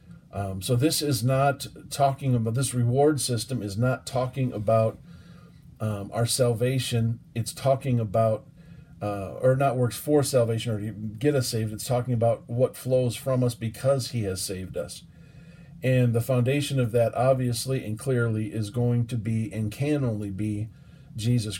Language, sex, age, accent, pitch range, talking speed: English, male, 40-59, American, 115-140 Hz, 165 wpm